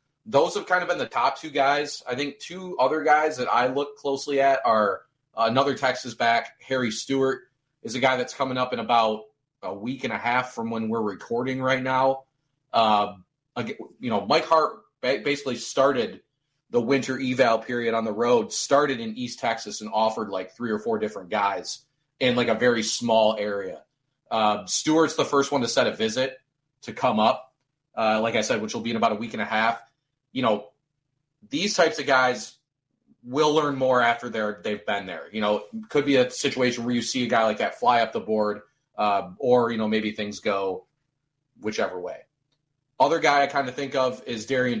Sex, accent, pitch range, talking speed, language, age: male, American, 110-140 Hz, 200 wpm, English, 30-49